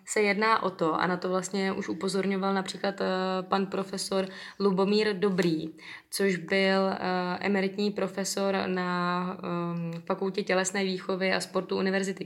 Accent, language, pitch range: native, Czech, 175-195 Hz